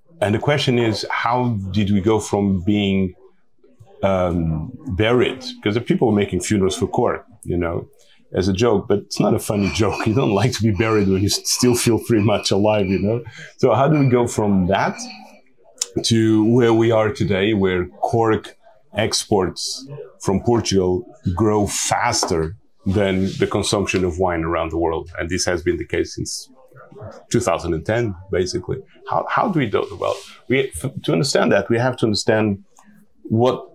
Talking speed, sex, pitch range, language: 175 wpm, male, 95-125 Hz, English